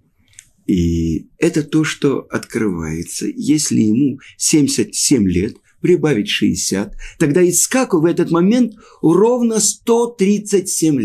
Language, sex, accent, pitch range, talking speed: Russian, male, native, 125-185 Hz, 100 wpm